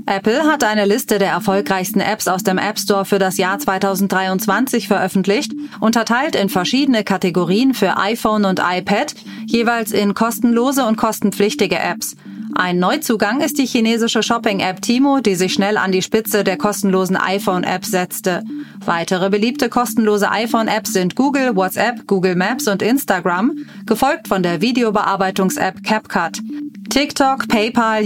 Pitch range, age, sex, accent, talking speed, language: 190-230 Hz, 30-49, female, German, 140 wpm, German